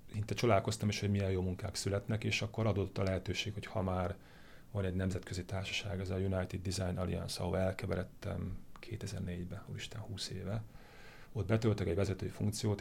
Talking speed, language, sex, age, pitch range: 170 wpm, Hungarian, male, 30-49, 95-110 Hz